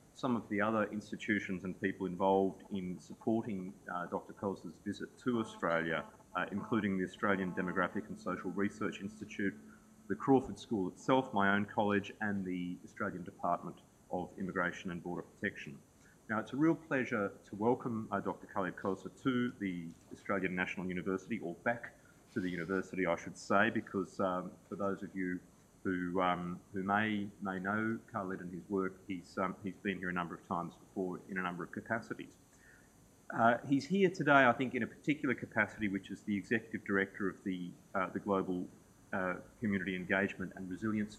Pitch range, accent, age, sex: 95-110 Hz, Australian, 30-49, male